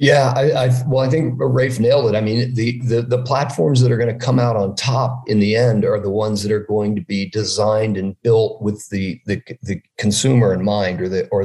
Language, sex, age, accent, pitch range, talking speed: English, male, 50-69, American, 100-125 Hz, 245 wpm